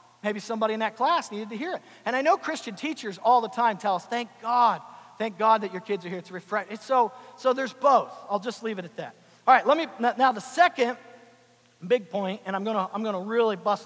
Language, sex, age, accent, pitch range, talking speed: English, male, 40-59, American, 185-230 Hz, 245 wpm